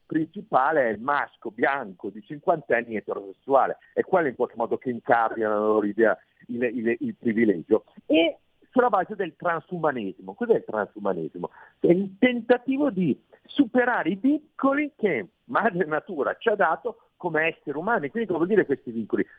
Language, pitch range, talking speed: Italian, 145-235 Hz, 165 wpm